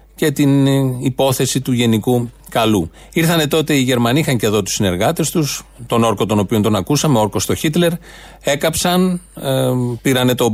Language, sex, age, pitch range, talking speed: Greek, male, 40-59, 115-155 Hz, 160 wpm